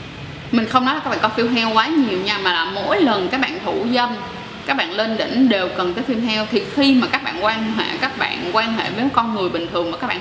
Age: 20-39